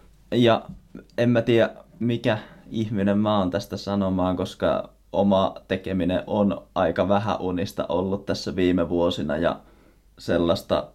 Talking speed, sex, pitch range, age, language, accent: 125 wpm, male, 85-95 Hz, 20-39, Finnish, native